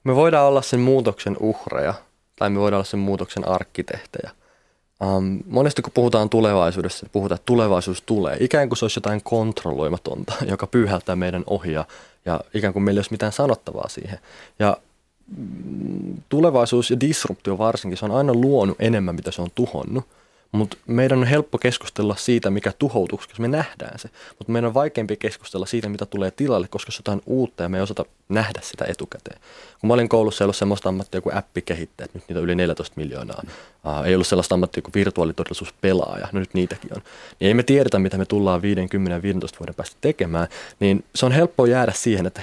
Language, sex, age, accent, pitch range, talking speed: Finnish, male, 20-39, native, 95-120 Hz, 190 wpm